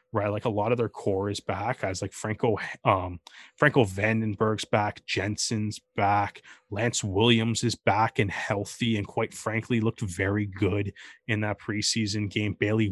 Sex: male